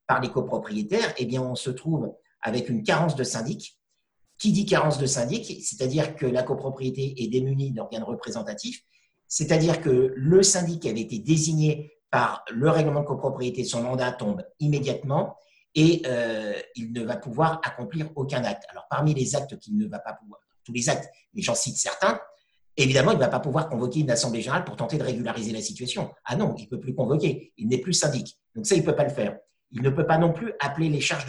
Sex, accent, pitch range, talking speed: male, French, 125-165 Hz, 215 wpm